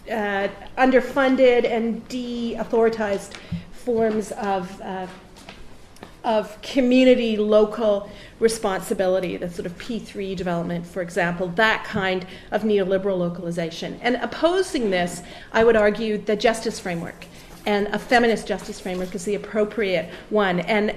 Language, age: English, 40-59